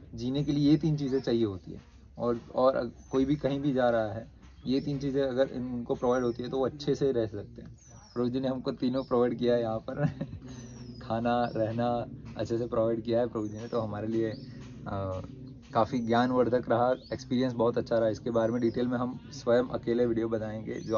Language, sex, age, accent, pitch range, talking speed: Hindi, male, 20-39, native, 115-130 Hz, 205 wpm